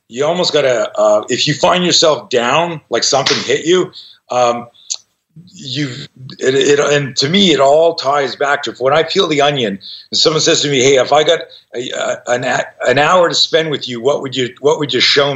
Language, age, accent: English, 40-59, American